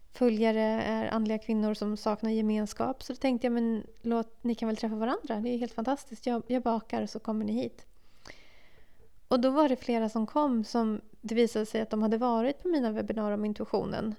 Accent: Swedish